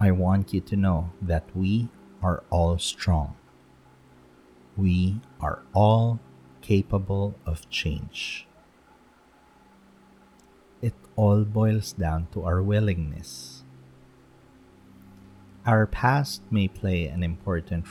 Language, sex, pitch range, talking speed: English, male, 80-105 Hz, 95 wpm